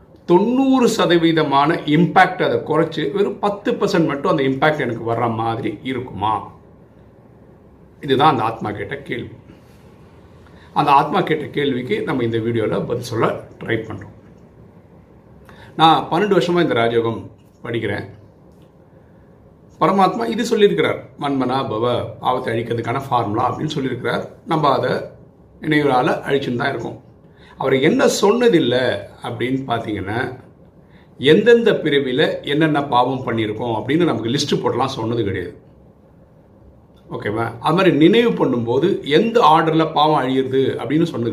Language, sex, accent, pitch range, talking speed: Tamil, male, native, 115-155 Hz, 115 wpm